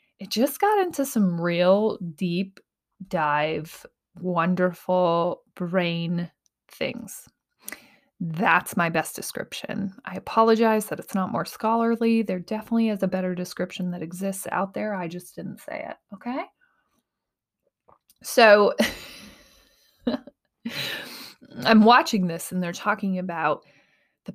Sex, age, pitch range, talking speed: female, 20-39, 180-225 Hz, 115 wpm